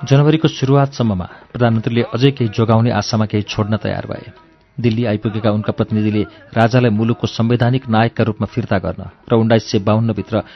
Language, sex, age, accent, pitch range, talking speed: English, male, 40-59, Indian, 105-130 Hz, 165 wpm